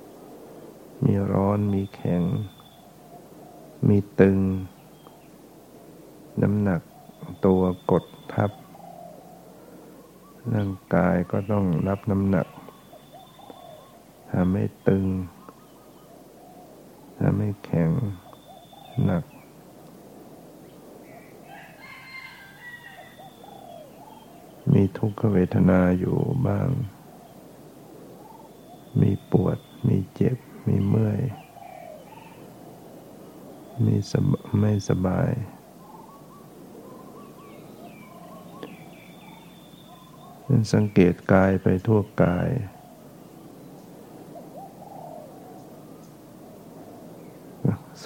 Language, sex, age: Thai, male, 60-79